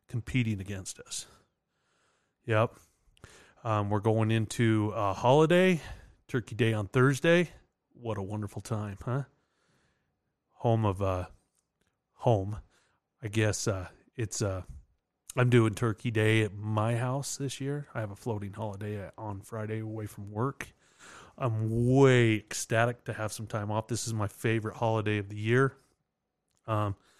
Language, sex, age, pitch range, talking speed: English, male, 30-49, 100-125 Hz, 145 wpm